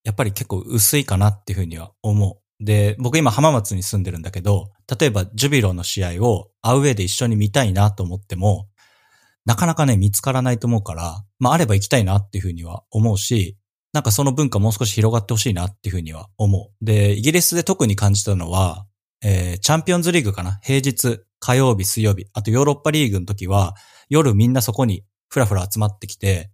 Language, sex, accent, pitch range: English, male, Japanese, 100-120 Hz